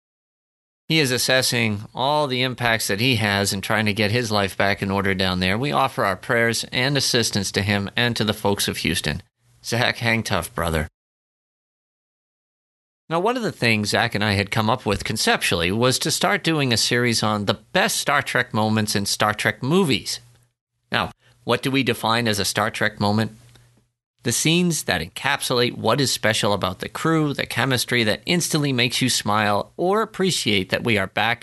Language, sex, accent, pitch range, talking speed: English, male, American, 105-135 Hz, 190 wpm